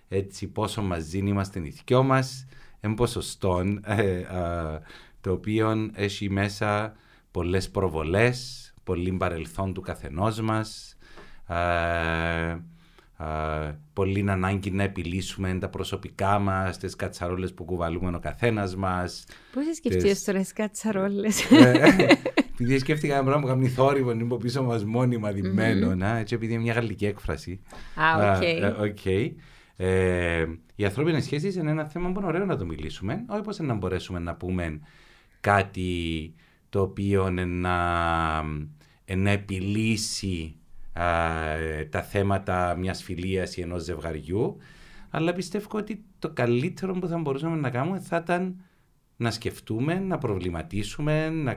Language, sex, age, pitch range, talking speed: Greek, male, 30-49, 90-125 Hz, 125 wpm